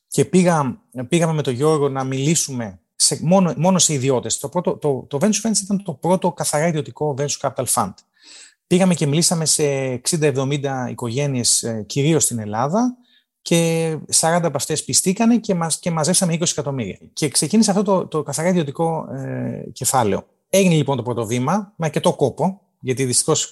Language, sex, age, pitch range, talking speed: Greek, male, 30-49, 130-180 Hz, 170 wpm